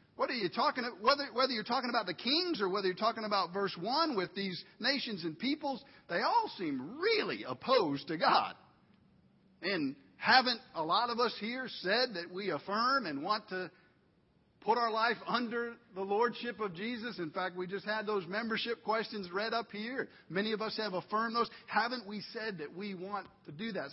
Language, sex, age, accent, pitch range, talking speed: English, male, 50-69, American, 170-220 Hz, 200 wpm